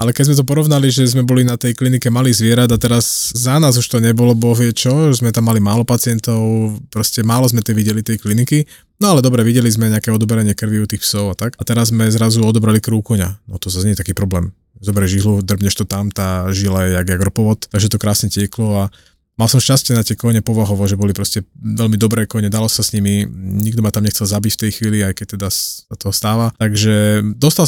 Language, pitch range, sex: Slovak, 105-120 Hz, male